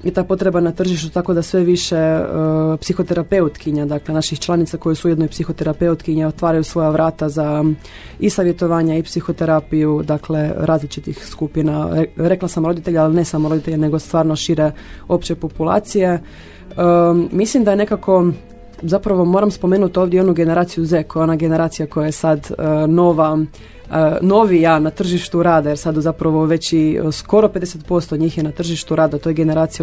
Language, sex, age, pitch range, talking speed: Croatian, female, 20-39, 155-180 Hz, 160 wpm